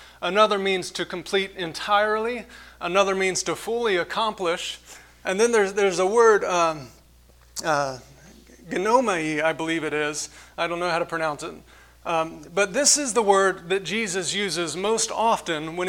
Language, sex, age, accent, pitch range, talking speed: English, male, 30-49, American, 165-205 Hz, 160 wpm